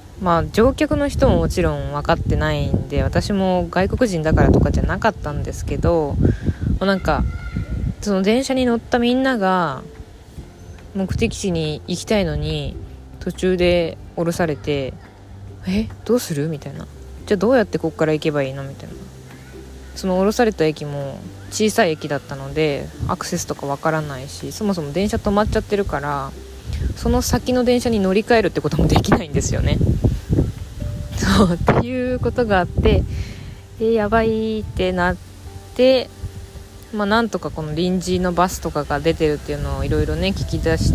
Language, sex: Japanese, female